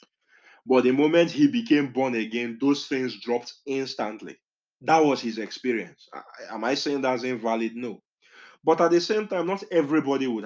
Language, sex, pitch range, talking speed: English, male, 115-145 Hz, 165 wpm